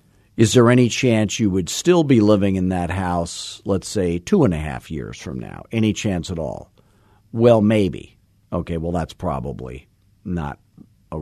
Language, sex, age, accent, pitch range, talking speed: English, male, 50-69, American, 85-115 Hz, 175 wpm